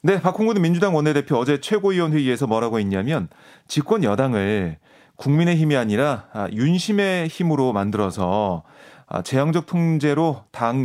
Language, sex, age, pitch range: Korean, male, 30-49, 125-175 Hz